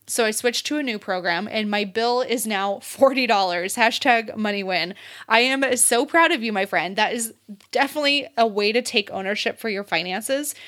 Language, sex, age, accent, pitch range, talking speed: English, female, 20-39, American, 200-250 Hz, 195 wpm